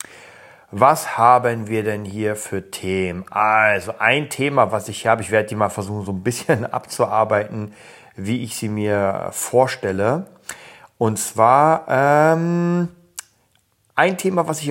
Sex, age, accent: male, 40-59, German